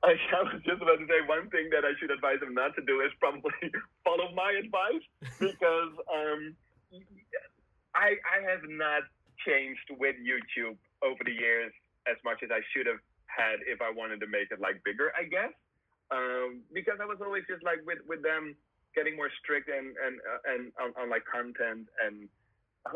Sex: male